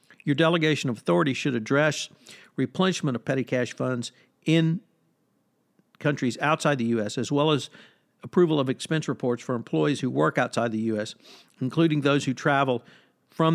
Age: 50-69